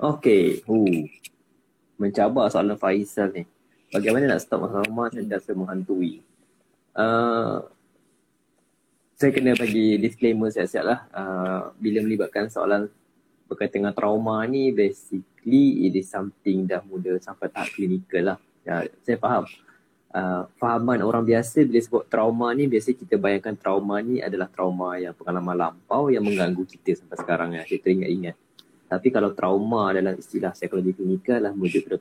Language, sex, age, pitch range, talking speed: Malay, male, 20-39, 95-120 Hz, 135 wpm